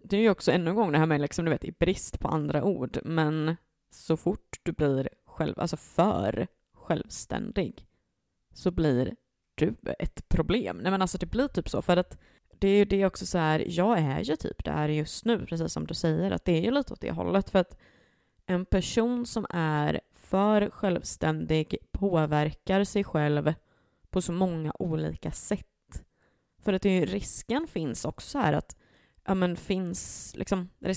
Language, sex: Swedish, female